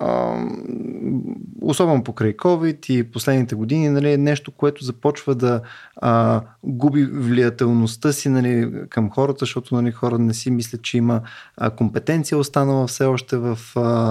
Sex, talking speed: male, 140 wpm